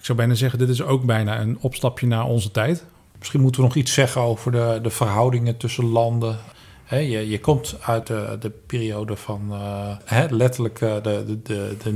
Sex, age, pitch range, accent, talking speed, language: male, 40-59, 110-130 Hz, Dutch, 190 wpm, Dutch